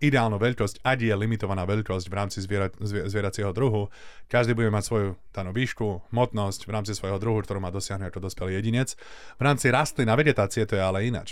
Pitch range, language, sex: 95-120 Hz, Slovak, male